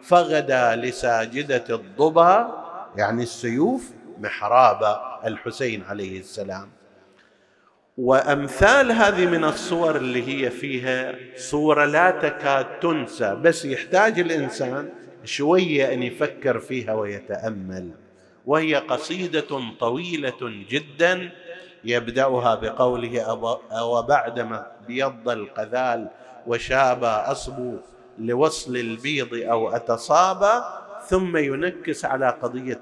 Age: 50-69